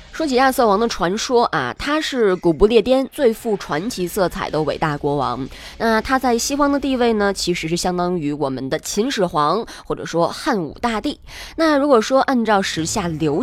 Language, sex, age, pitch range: Chinese, female, 20-39, 150-225 Hz